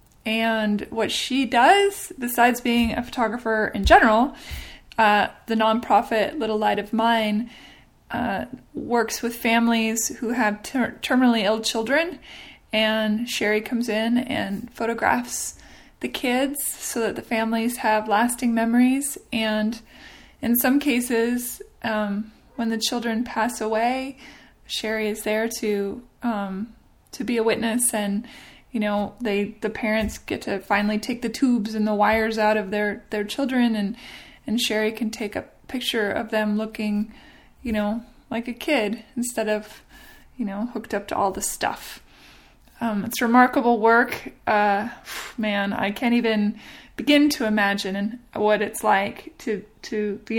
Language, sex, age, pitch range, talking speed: English, female, 20-39, 215-240 Hz, 150 wpm